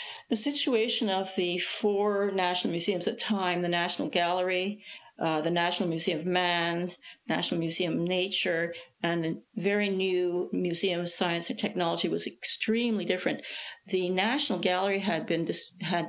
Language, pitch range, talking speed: English, 175-215 Hz, 155 wpm